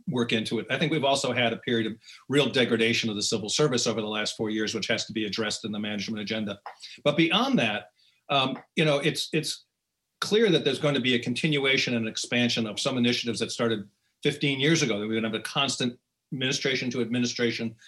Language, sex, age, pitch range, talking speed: English, male, 40-59, 115-140 Hz, 225 wpm